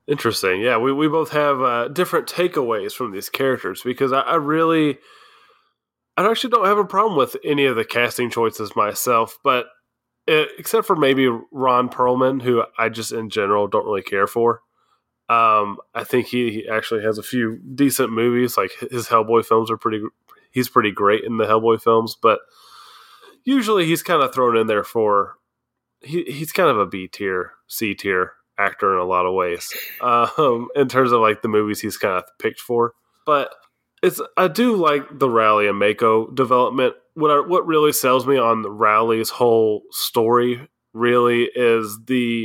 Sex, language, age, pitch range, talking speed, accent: male, English, 20-39, 115-145 Hz, 180 wpm, American